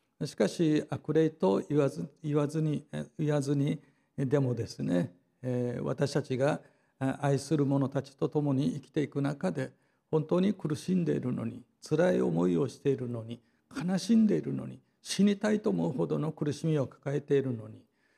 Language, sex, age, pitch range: Japanese, male, 60-79, 130-155 Hz